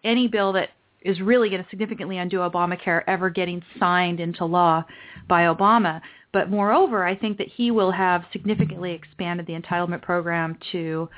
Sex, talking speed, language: female, 165 wpm, English